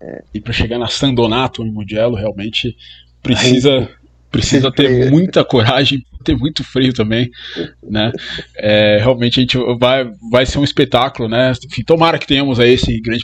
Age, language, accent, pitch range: 20-39, Portuguese, Brazilian, 120-140 Hz